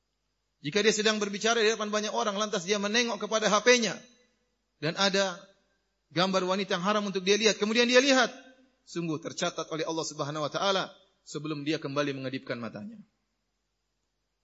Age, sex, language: 30-49, male, Indonesian